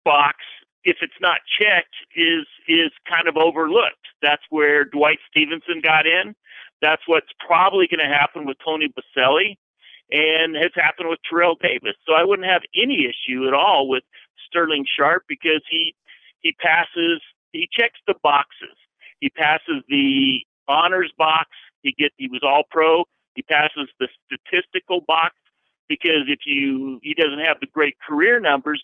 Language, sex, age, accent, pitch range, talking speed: English, male, 50-69, American, 150-205 Hz, 160 wpm